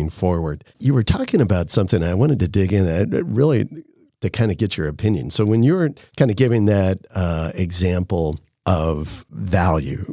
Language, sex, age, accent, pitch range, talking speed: English, male, 50-69, American, 85-115 Hz, 180 wpm